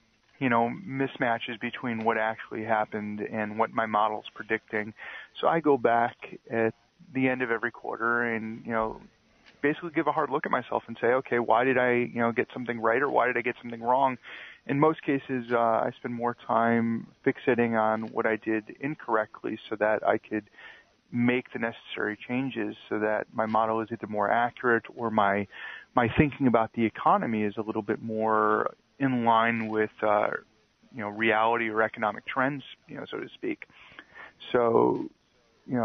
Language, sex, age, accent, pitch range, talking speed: English, male, 30-49, American, 110-125 Hz, 180 wpm